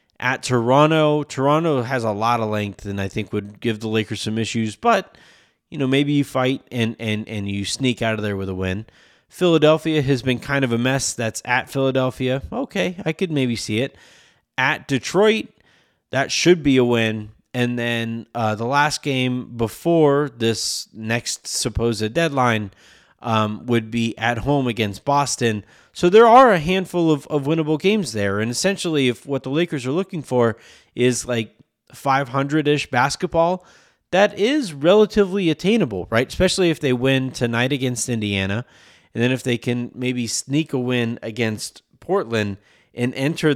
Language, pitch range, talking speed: English, 115-155 Hz, 170 wpm